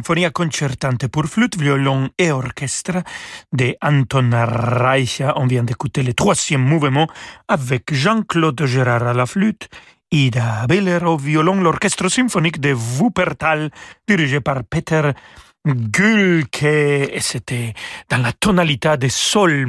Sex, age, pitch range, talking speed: male, 40-59, 135-175 Hz, 120 wpm